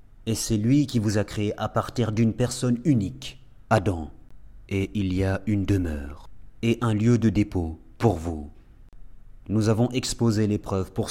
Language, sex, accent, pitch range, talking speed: French, male, French, 100-125 Hz, 165 wpm